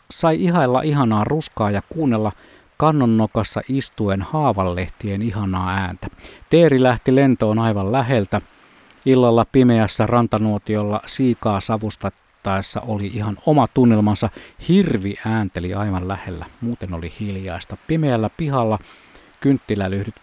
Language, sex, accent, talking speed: Finnish, male, native, 105 wpm